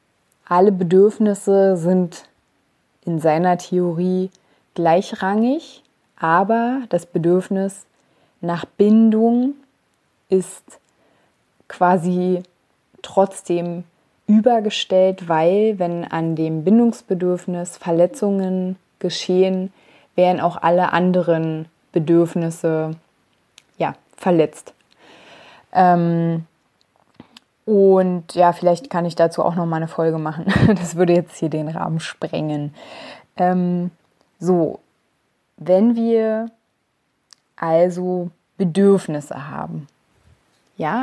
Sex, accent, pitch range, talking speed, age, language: female, German, 170-195 Hz, 85 wpm, 20-39, German